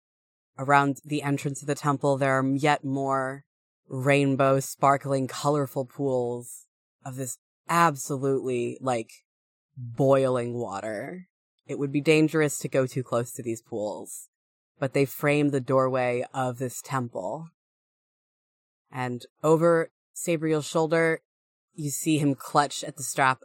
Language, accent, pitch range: English, American, 125-150 Hz